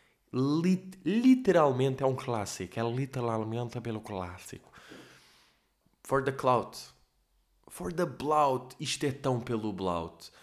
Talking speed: 115 wpm